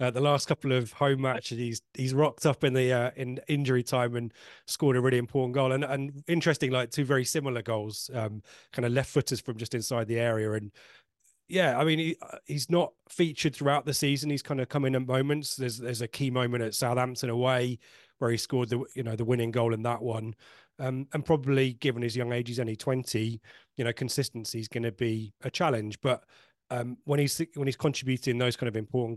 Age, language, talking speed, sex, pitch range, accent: 30-49, English, 220 wpm, male, 115-135 Hz, British